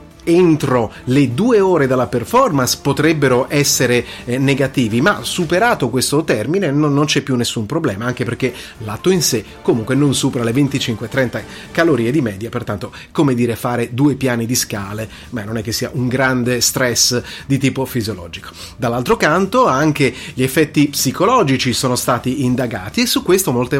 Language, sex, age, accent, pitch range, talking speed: Italian, male, 30-49, native, 115-145 Hz, 165 wpm